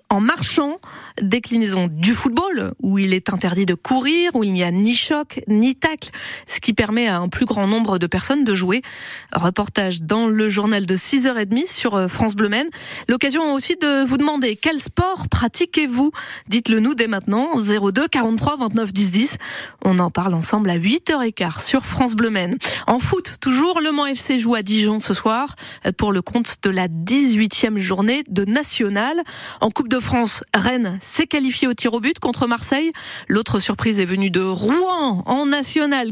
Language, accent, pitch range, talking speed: French, French, 205-275 Hz, 180 wpm